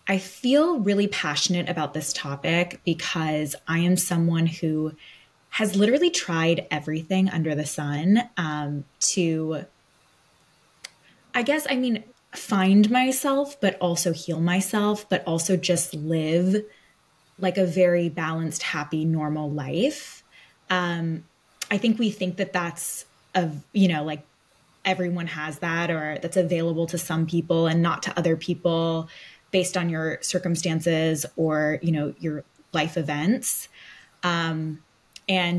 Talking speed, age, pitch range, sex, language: 130 wpm, 20-39, 155-185 Hz, female, English